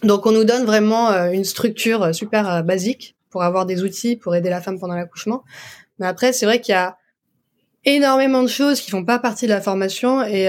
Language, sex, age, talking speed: French, female, 20-39, 230 wpm